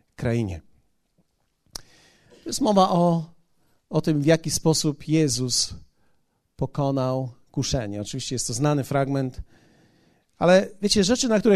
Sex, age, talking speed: male, 40-59, 120 wpm